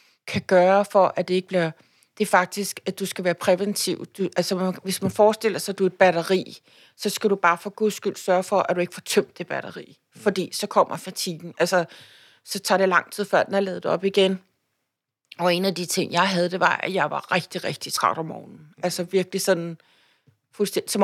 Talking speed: 225 wpm